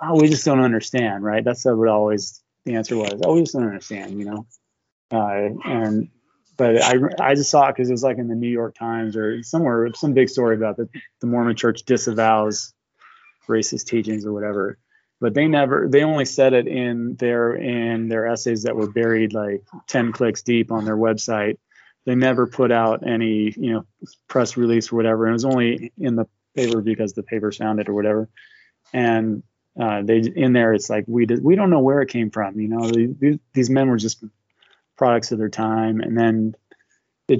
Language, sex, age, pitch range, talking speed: English, male, 20-39, 110-120 Hz, 205 wpm